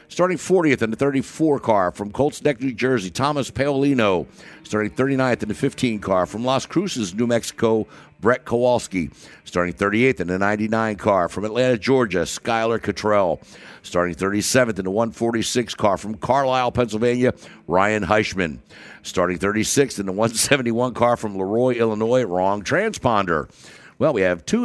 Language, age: English, 60-79